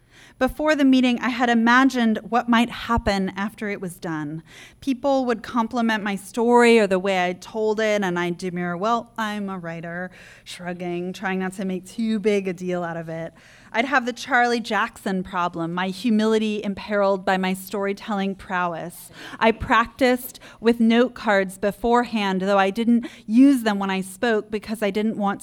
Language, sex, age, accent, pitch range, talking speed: English, female, 20-39, American, 190-235 Hz, 175 wpm